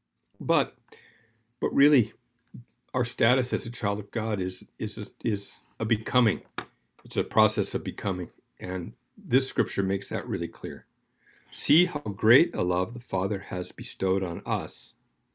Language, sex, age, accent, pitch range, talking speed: English, male, 50-69, American, 100-120 Hz, 150 wpm